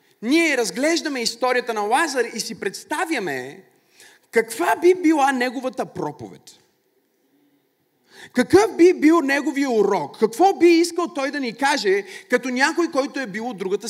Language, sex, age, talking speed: Bulgarian, male, 30-49, 140 wpm